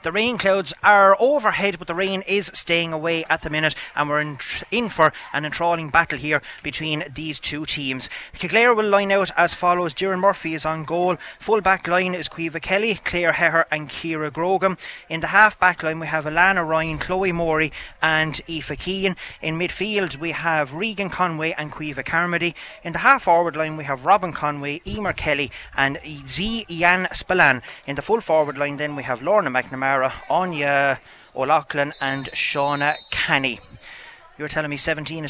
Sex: male